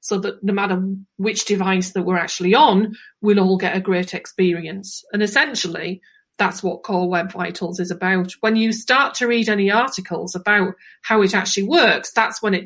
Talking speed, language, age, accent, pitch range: 190 wpm, English, 40-59, British, 185-220 Hz